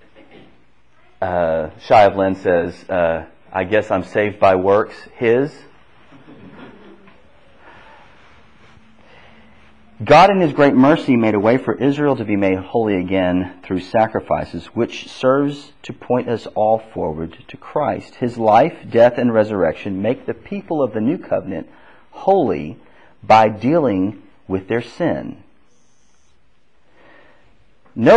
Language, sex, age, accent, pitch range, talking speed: English, male, 40-59, American, 95-145 Hz, 120 wpm